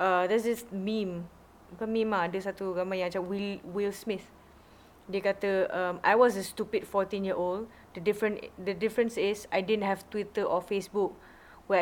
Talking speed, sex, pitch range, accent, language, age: 180 wpm, female, 185-220 Hz, Malaysian, English, 20-39